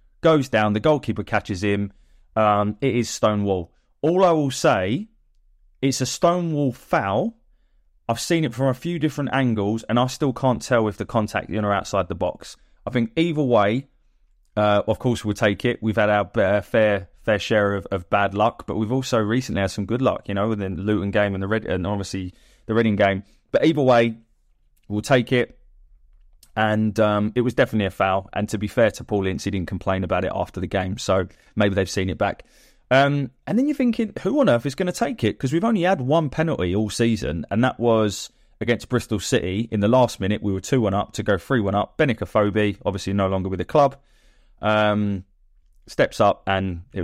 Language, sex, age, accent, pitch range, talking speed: English, male, 20-39, British, 100-130 Hz, 215 wpm